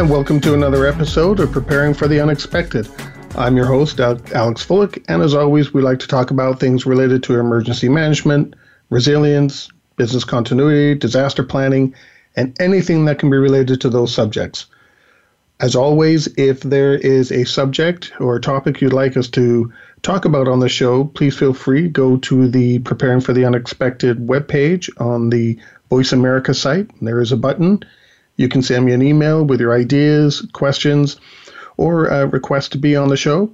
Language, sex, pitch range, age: English, male, 125-145 Hz, 40-59